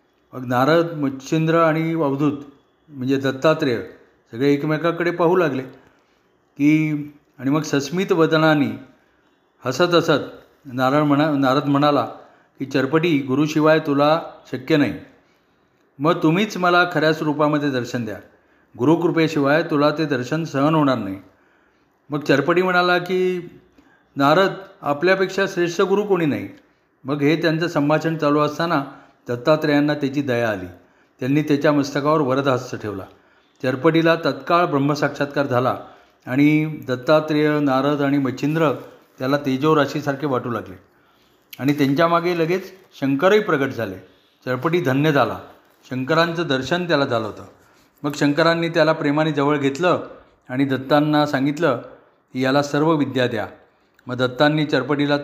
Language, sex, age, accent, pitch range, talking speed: Marathi, male, 40-59, native, 130-160 Hz, 120 wpm